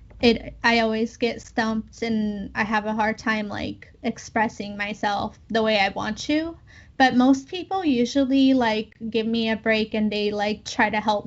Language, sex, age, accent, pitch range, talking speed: English, female, 10-29, American, 220-260 Hz, 180 wpm